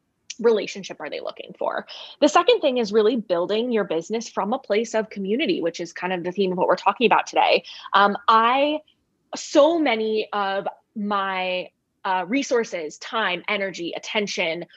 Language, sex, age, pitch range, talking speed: English, female, 20-39, 190-245 Hz, 165 wpm